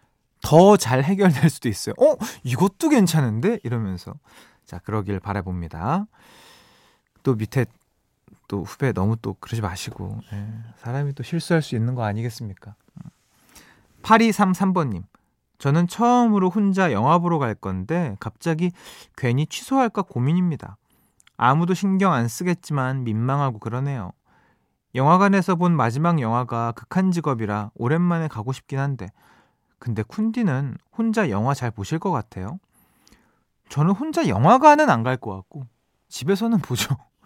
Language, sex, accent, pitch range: Korean, male, native, 110-180 Hz